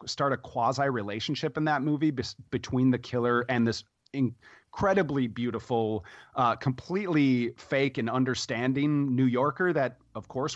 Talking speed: 135 wpm